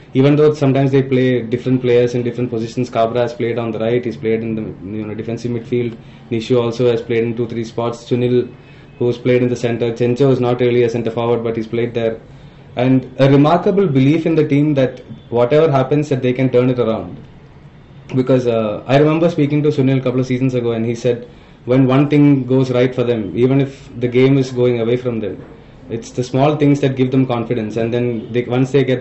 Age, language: 20-39, English